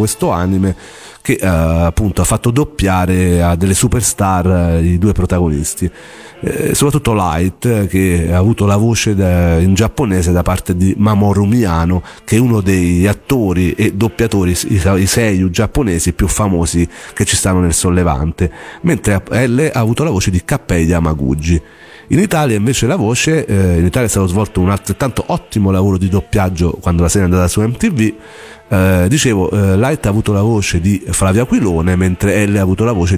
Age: 40-59